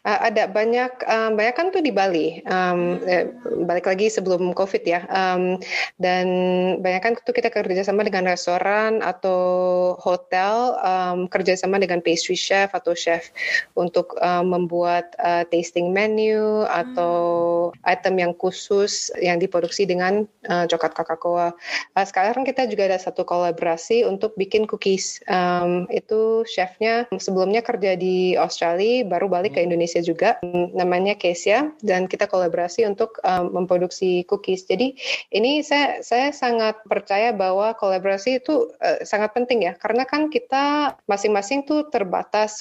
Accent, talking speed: native, 140 wpm